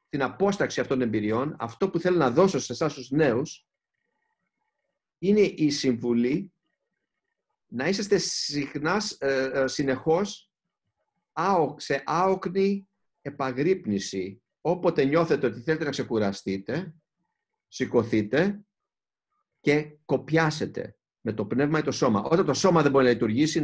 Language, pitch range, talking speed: Greek, 115-170 Hz, 115 wpm